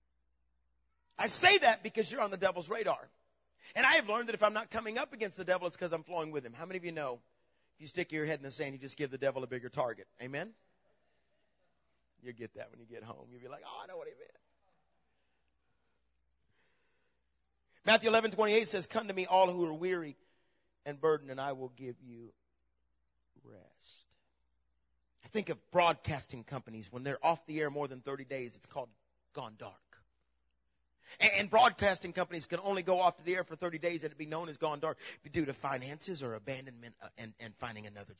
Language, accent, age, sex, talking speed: English, American, 40-59, male, 205 wpm